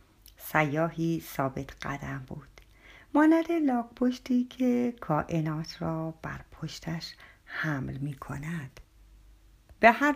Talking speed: 95 wpm